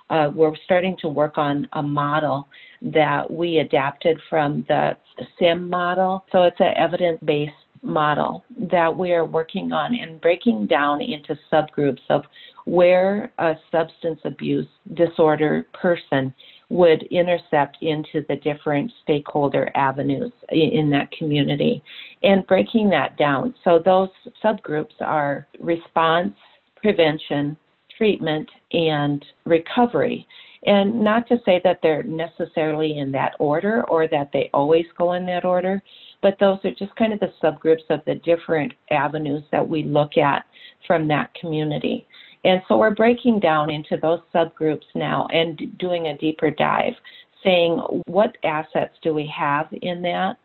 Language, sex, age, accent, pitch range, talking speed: English, female, 50-69, American, 155-185 Hz, 140 wpm